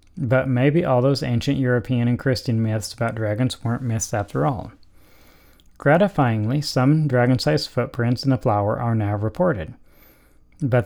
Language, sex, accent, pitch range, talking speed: English, male, American, 115-140 Hz, 145 wpm